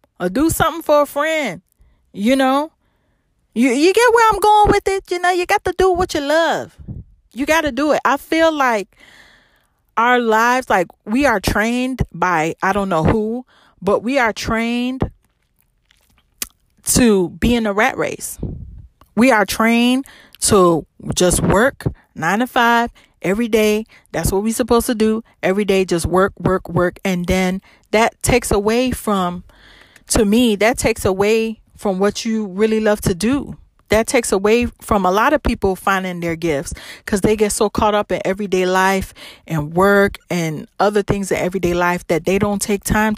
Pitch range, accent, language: 190-245 Hz, American, English